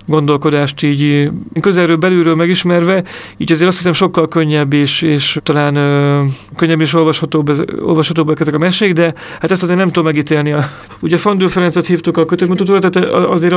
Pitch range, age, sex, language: 155-175 Hz, 40-59, male, Hungarian